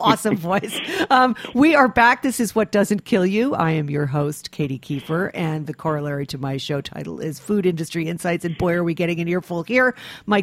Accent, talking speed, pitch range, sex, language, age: American, 220 wpm, 165-200 Hz, female, English, 50-69